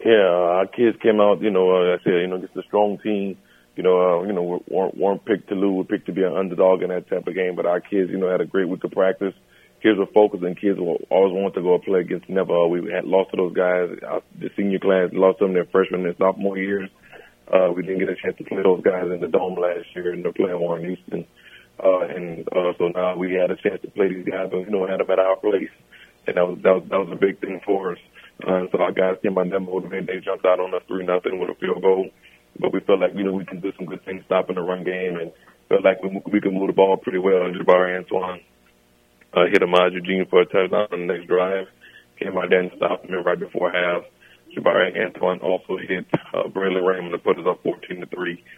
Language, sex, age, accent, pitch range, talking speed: English, male, 30-49, American, 90-95 Hz, 270 wpm